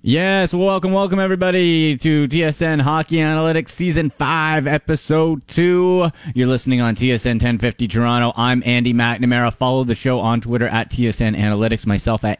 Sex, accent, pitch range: male, American, 110-160 Hz